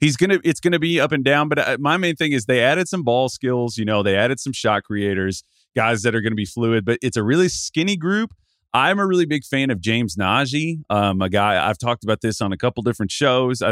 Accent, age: American, 30-49